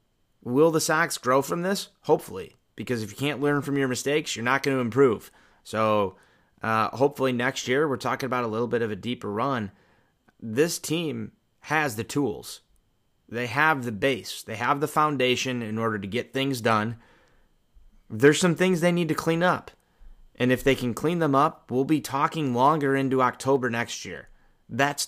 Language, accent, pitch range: English, American, 115-145 Hz